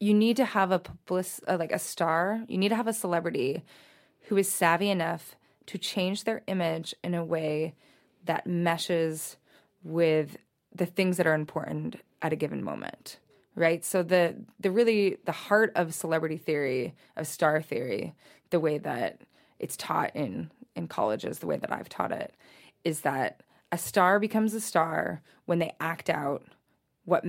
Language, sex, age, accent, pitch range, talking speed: English, female, 20-39, American, 160-190 Hz, 170 wpm